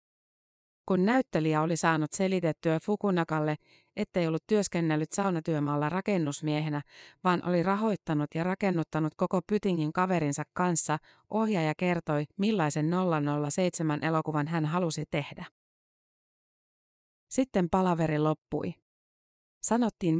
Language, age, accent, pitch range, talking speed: Finnish, 30-49, native, 155-185 Hz, 90 wpm